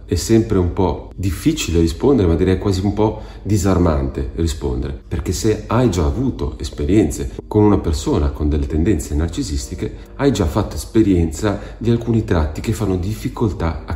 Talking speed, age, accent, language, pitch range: 160 wpm, 40-59, native, Italian, 75-100 Hz